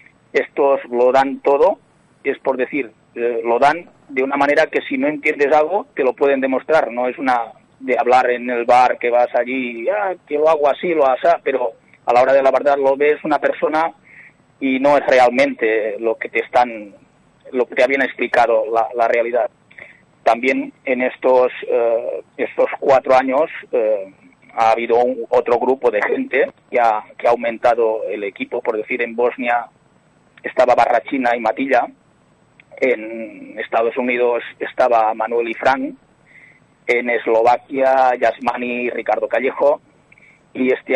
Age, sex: 30-49, male